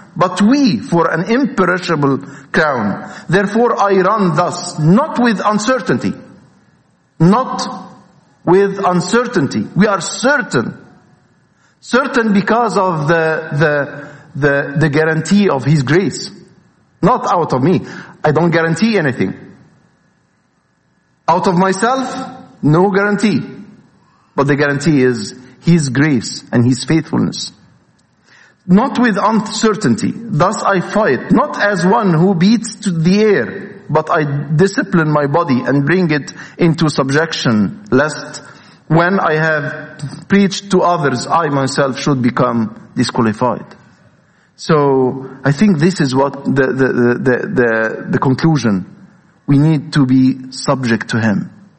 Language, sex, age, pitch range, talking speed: English, male, 50-69, 140-200 Hz, 120 wpm